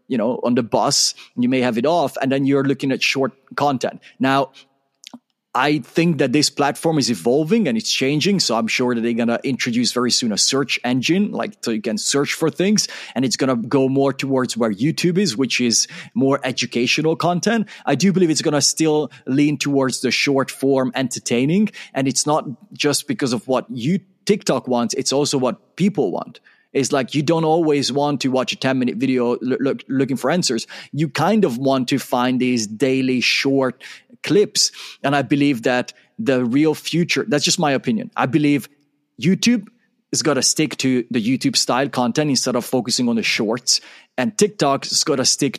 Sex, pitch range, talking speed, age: male, 130-165 Hz, 195 wpm, 30-49